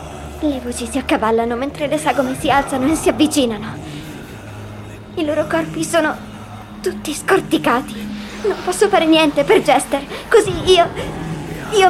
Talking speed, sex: 135 wpm, male